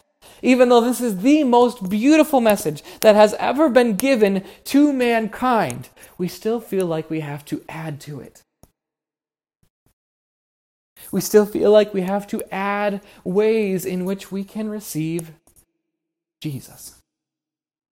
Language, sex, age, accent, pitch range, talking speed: English, male, 20-39, American, 155-210 Hz, 135 wpm